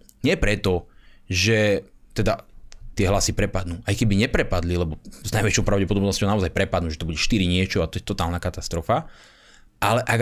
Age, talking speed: 30-49, 165 wpm